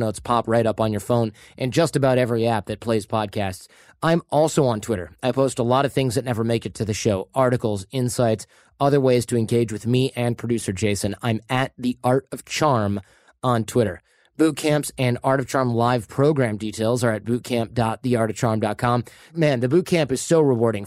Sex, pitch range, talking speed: male, 115-135 Hz, 195 wpm